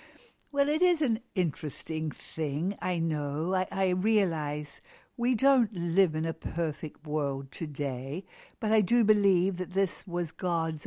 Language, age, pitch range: English, 60-79, 160-230 Hz